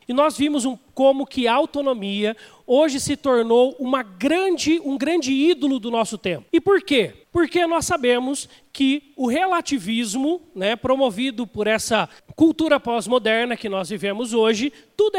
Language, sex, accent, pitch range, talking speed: Portuguese, male, Brazilian, 230-300 Hz, 155 wpm